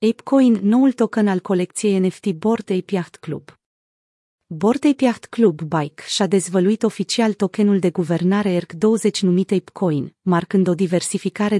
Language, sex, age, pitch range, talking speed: Romanian, female, 30-49, 175-220 Hz, 130 wpm